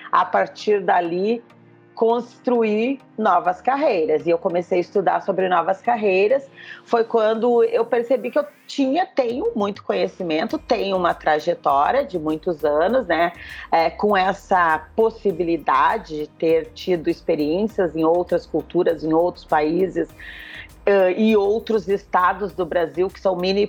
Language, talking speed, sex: Portuguese, 130 wpm, female